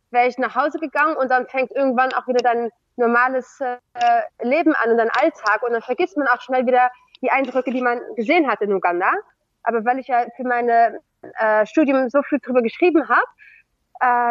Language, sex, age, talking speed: German, female, 20-39, 195 wpm